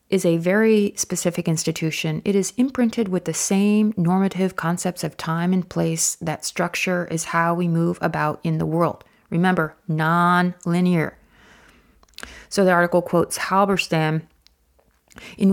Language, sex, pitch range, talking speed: English, female, 165-195 Hz, 135 wpm